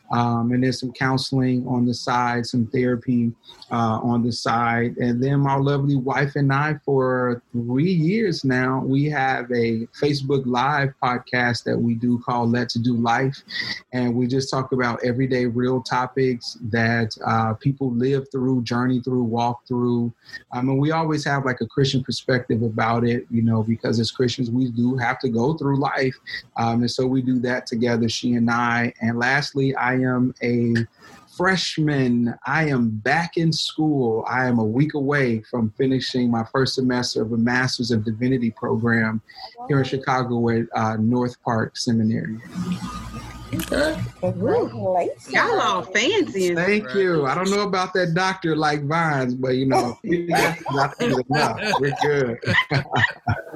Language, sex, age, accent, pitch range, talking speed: English, male, 30-49, American, 120-135 Hz, 160 wpm